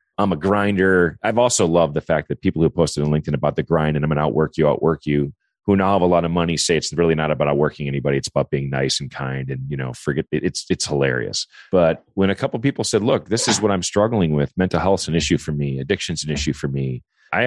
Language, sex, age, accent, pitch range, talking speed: English, male, 40-59, American, 70-90 Hz, 270 wpm